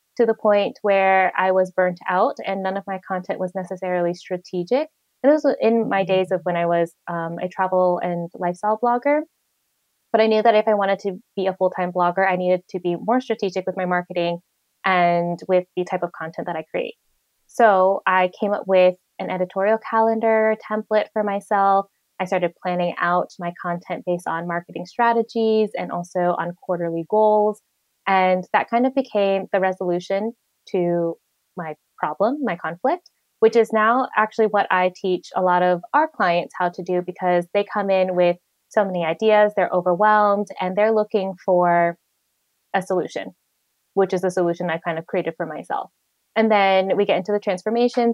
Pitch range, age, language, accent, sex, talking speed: 180-215 Hz, 20-39, English, American, female, 185 wpm